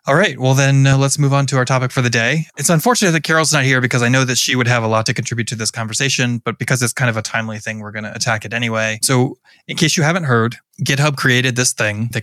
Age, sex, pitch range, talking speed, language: 20-39, male, 115-135 Hz, 290 wpm, English